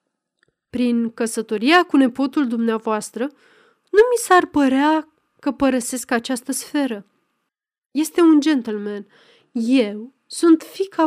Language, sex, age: Romanian, female, 30-49